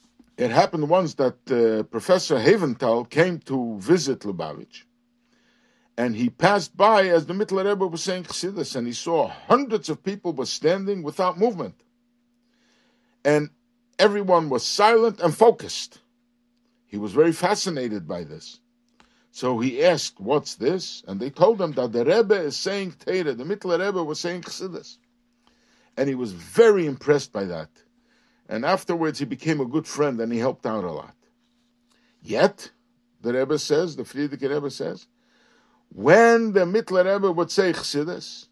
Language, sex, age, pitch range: English, male, 60-79, 145-230 Hz